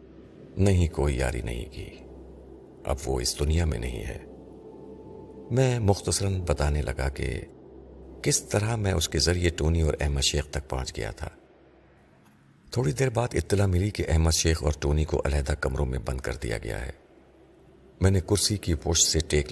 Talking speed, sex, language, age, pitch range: 175 wpm, male, Urdu, 50-69, 70-90 Hz